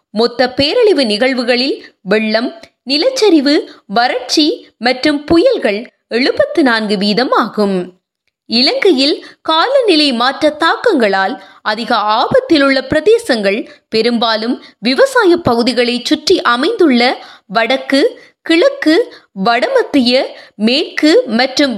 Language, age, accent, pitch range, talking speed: Tamil, 20-39, native, 235-320 Hz, 85 wpm